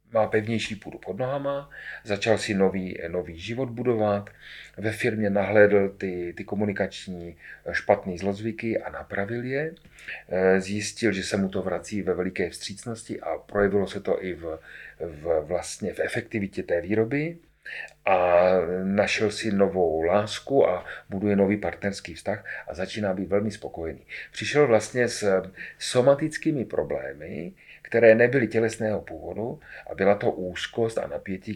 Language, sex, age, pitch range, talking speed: Czech, male, 40-59, 95-110 Hz, 135 wpm